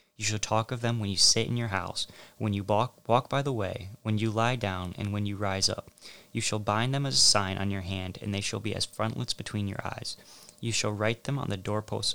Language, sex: English, male